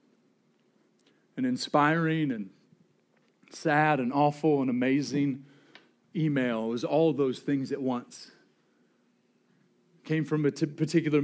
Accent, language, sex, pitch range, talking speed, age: American, English, male, 145-175 Hz, 115 wpm, 40-59